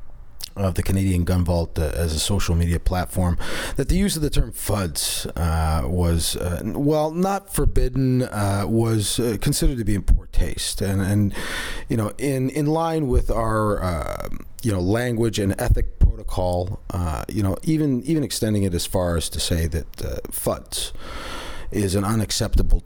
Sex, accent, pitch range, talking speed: male, American, 85-110 Hz, 175 wpm